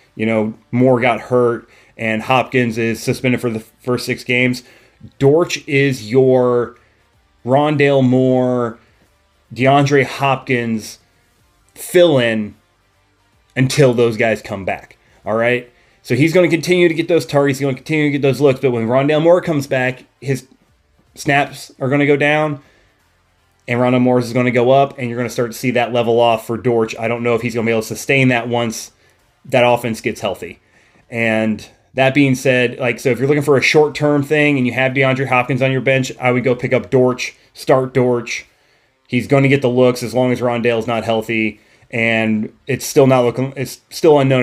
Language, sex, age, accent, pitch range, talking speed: English, male, 30-49, American, 115-135 Hz, 195 wpm